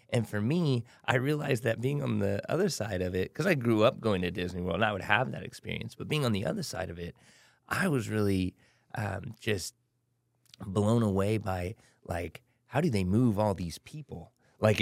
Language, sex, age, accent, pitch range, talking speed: English, male, 30-49, American, 90-115 Hz, 210 wpm